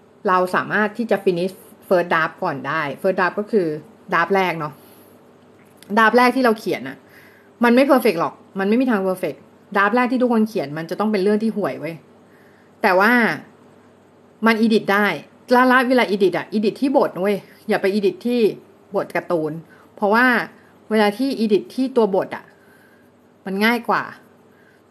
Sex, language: female, Thai